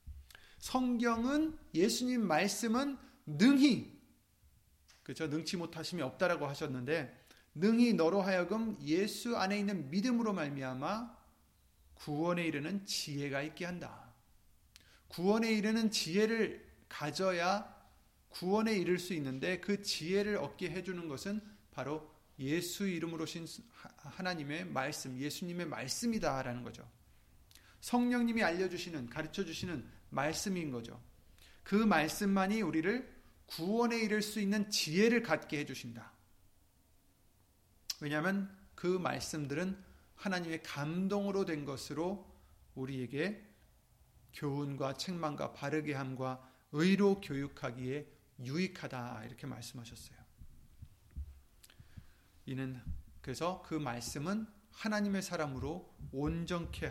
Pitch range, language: 130-200 Hz, Korean